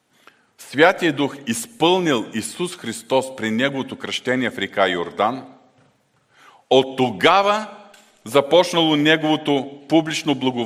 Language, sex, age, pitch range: Bulgarian, male, 40-59, 125-185 Hz